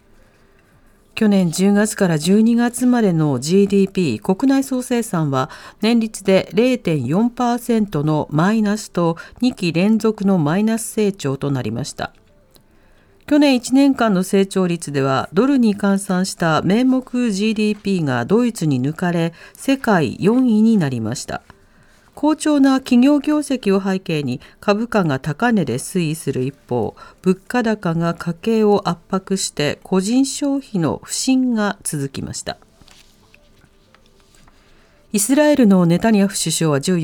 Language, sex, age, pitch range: Japanese, female, 50-69, 165-225 Hz